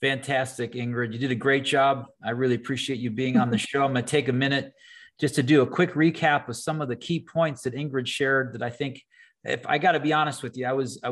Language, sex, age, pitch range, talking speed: English, male, 40-59, 125-150 Hz, 270 wpm